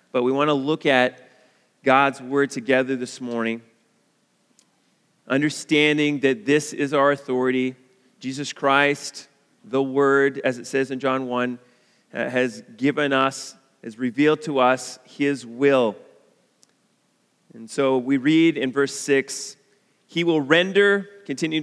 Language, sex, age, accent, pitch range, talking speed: English, male, 30-49, American, 130-155 Hz, 130 wpm